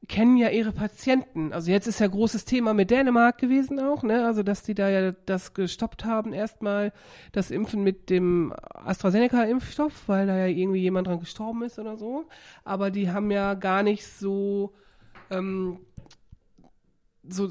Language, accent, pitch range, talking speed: German, German, 175-220 Hz, 165 wpm